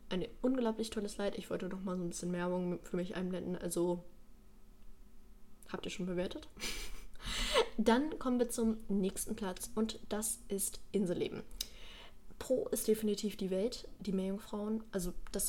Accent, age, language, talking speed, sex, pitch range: German, 20-39, German, 150 wpm, female, 190-225 Hz